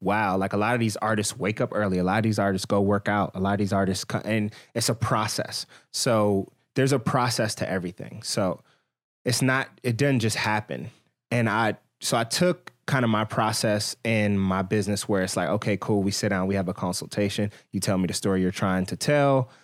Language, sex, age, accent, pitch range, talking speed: English, male, 20-39, American, 100-115 Hz, 225 wpm